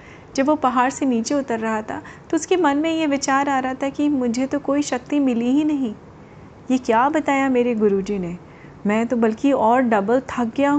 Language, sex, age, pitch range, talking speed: Hindi, female, 30-49, 215-270 Hz, 210 wpm